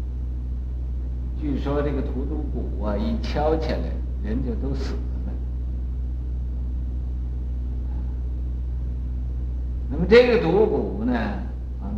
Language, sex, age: Chinese, male, 60-79